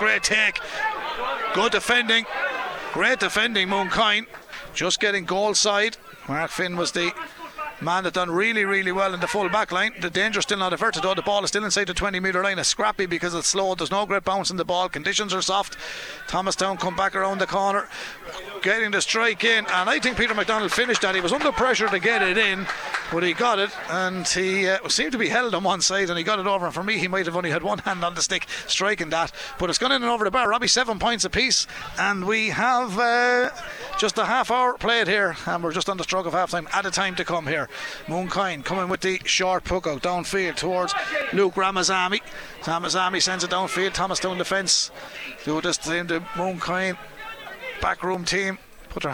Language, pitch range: English, 180-210 Hz